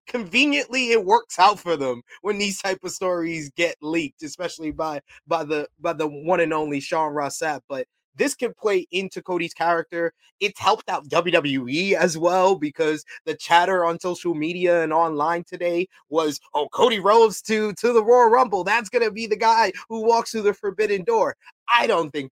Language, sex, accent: English, male, American